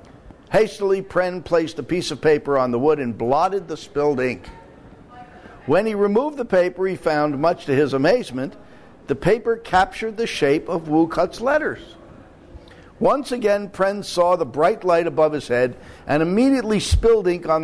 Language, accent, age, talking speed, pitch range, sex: English, American, 60-79, 170 wpm, 150-215 Hz, male